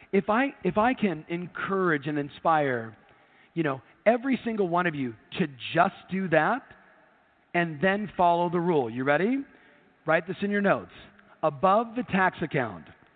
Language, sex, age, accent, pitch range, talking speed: English, male, 40-59, American, 160-210 Hz, 160 wpm